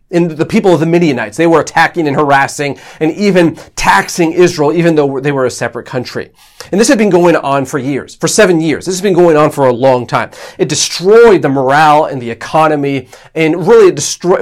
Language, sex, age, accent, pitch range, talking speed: English, male, 40-59, American, 140-190 Hz, 215 wpm